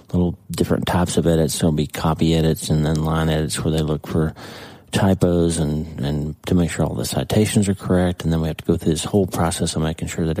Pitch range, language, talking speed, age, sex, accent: 80-95 Hz, English, 250 wpm, 40-59, male, American